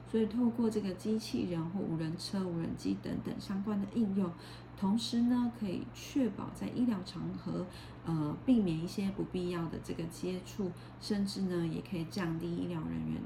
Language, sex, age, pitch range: Chinese, female, 30-49, 170-220 Hz